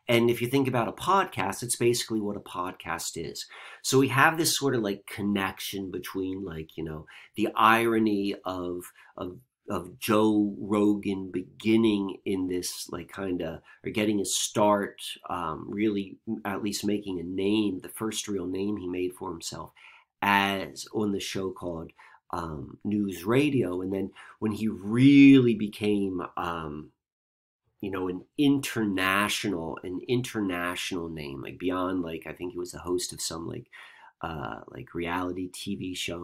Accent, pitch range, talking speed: American, 90-110 Hz, 160 wpm